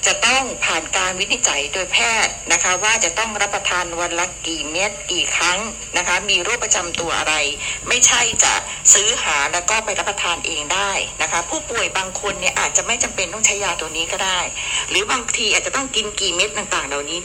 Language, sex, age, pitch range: Thai, female, 60-79, 165-225 Hz